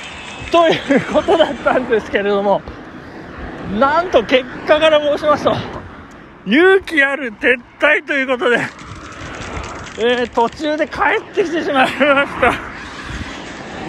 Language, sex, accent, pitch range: Japanese, male, native, 215-300 Hz